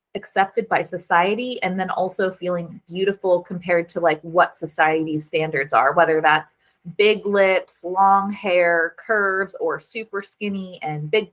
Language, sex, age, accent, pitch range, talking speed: English, female, 20-39, American, 175-220 Hz, 145 wpm